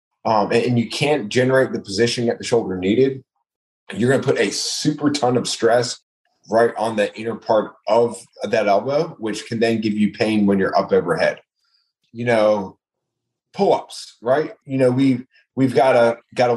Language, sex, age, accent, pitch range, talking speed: English, male, 30-49, American, 105-130 Hz, 180 wpm